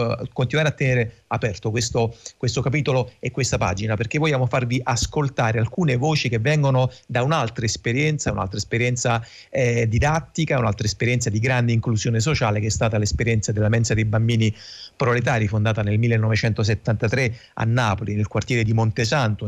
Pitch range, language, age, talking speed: 110-130 Hz, Italian, 40-59, 150 wpm